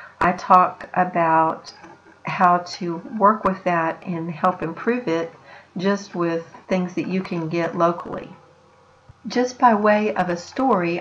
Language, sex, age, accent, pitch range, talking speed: English, female, 60-79, American, 175-205 Hz, 140 wpm